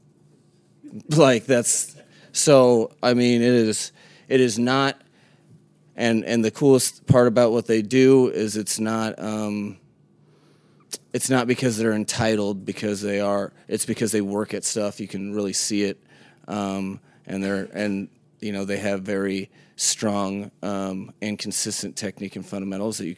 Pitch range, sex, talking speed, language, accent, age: 100-110 Hz, male, 155 wpm, English, American, 30-49